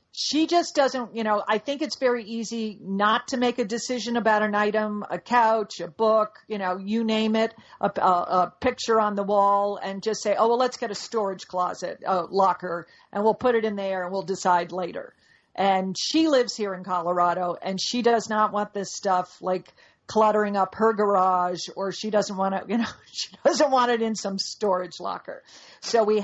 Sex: female